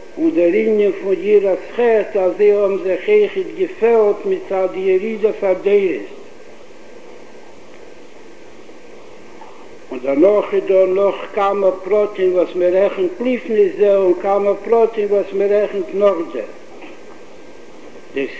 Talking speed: 100 wpm